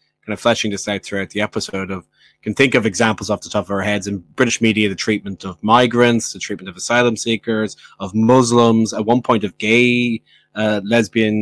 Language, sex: English, male